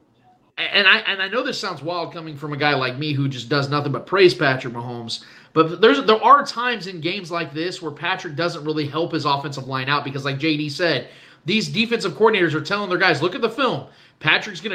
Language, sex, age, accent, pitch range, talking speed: English, male, 30-49, American, 160-230 Hz, 230 wpm